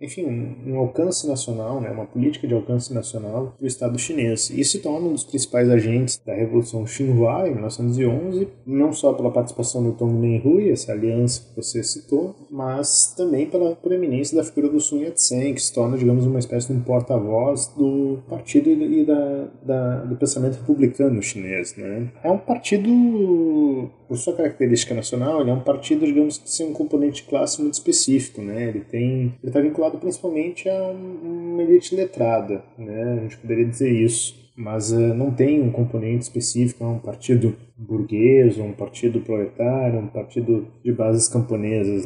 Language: Portuguese